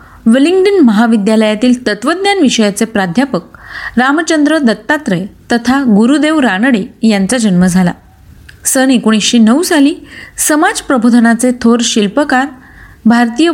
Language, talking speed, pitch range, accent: Marathi, 90 wpm, 215-285 Hz, native